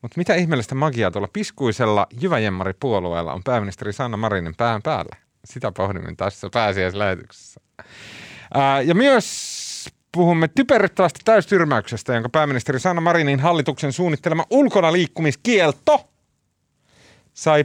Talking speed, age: 100 wpm, 30-49